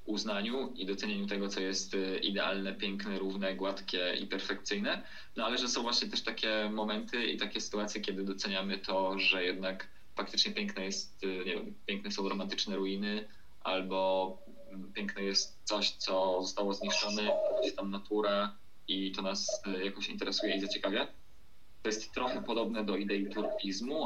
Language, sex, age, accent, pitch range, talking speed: Polish, male, 20-39, native, 95-105 Hz, 150 wpm